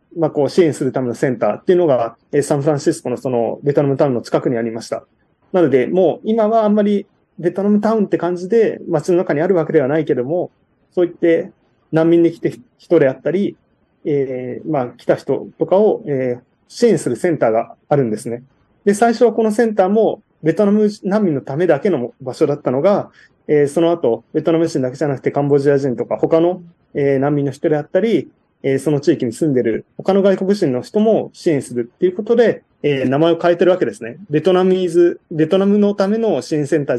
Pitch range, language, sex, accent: 140-185 Hz, Japanese, male, native